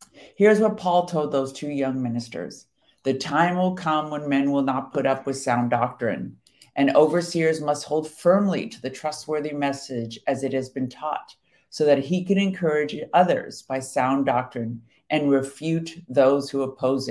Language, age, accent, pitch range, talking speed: English, 50-69, American, 130-155 Hz, 170 wpm